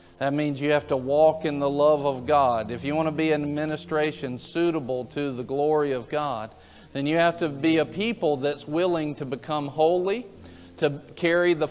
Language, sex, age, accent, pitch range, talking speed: English, male, 50-69, American, 140-165 Hz, 200 wpm